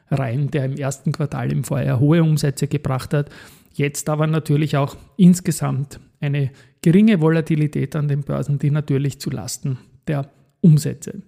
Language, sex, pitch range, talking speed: German, male, 135-155 Hz, 150 wpm